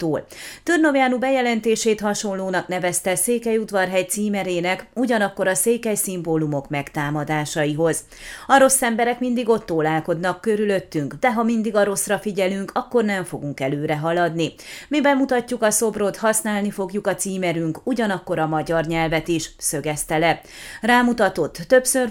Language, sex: Hungarian, female